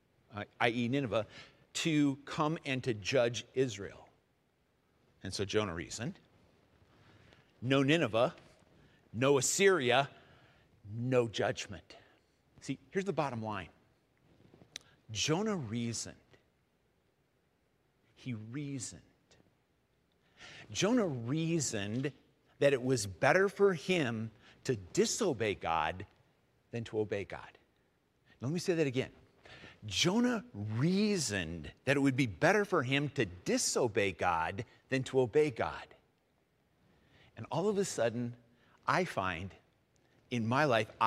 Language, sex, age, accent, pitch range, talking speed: English, male, 50-69, American, 110-145 Hz, 105 wpm